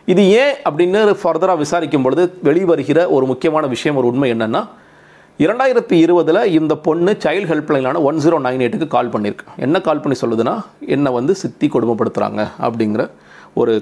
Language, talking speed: Tamil, 150 wpm